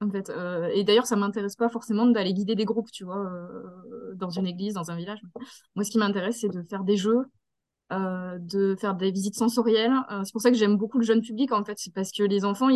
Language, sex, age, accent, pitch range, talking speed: French, female, 20-39, French, 190-230 Hz, 260 wpm